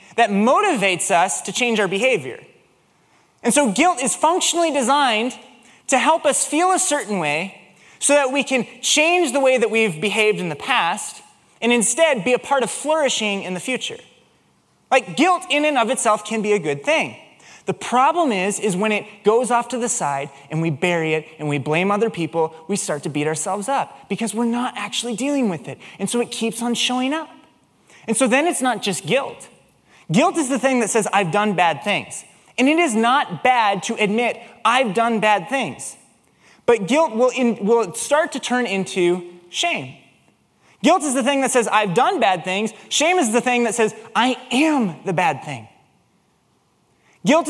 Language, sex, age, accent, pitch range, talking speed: English, male, 20-39, American, 205-275 Hz, 195 wpm